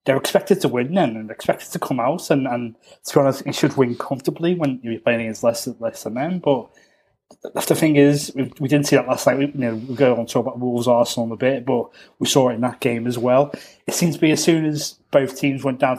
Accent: British